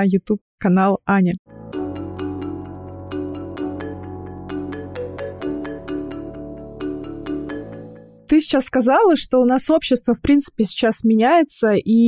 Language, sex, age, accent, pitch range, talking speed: Russian, female, 20-39, native, 170-225 Hz, 70 wpm